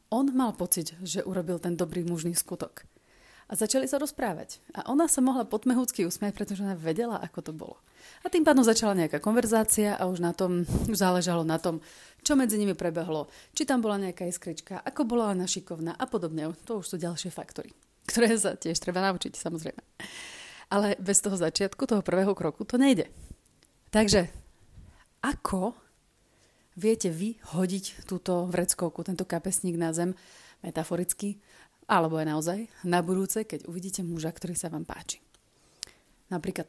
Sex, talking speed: female, 160 wpm